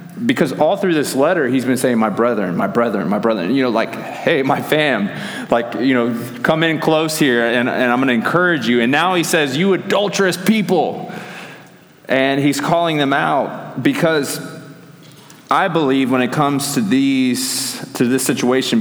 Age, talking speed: 30-49, 180 wpm